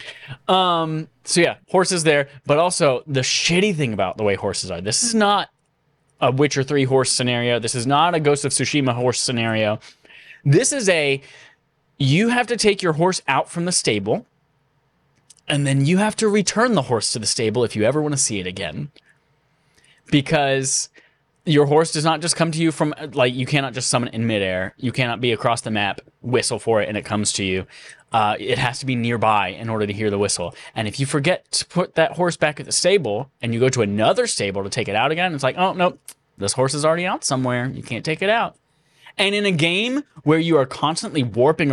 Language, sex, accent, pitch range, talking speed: English, male, American, 120-160 Hz, 225 wpm